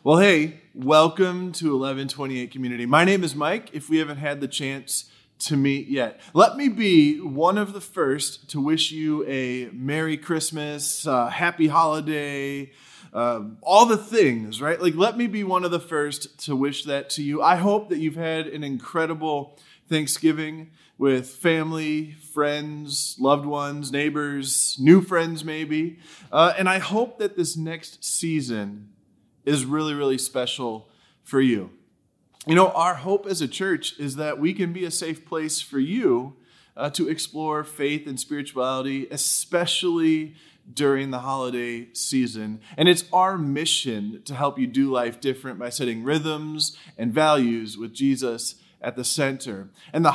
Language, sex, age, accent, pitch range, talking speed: English, male, 20-39, American, 135-165 Hz, 160 wpm